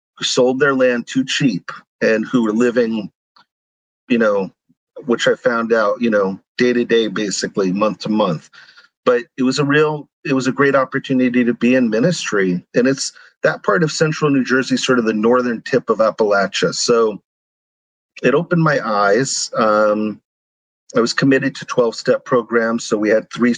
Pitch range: 115-150 Hz